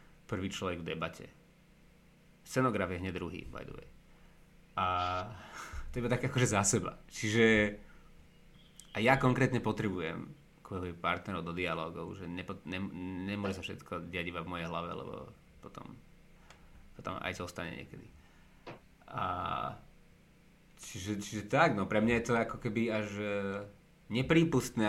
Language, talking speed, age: Slovak, 135 wpm, 30-49